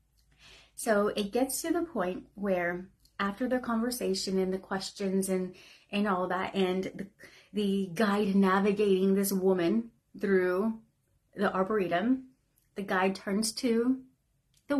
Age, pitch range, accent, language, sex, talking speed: 30-49, 185-220 Hz, American, English, female, 130 wpm